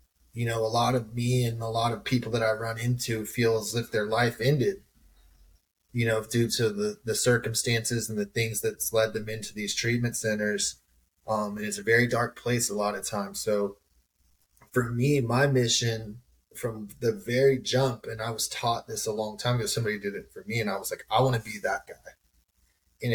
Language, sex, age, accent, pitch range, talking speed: English, male, 20-39, American, 105-125 Hz, 215 wpm